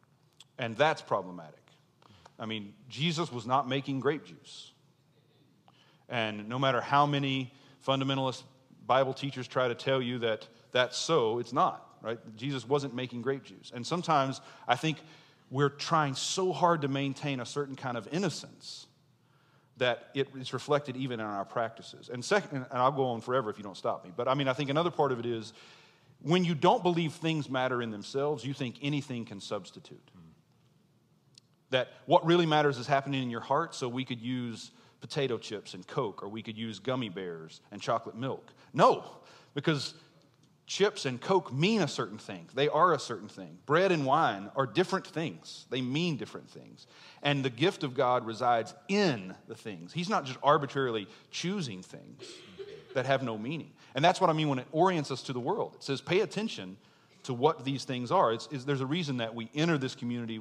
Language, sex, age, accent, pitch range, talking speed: English, male, 40-59, American, 125-150 Hz, 190 wpm